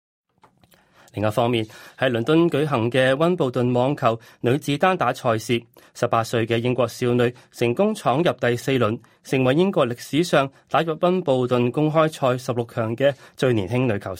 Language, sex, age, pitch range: Chinese, male, 20-39, 115-150 Hz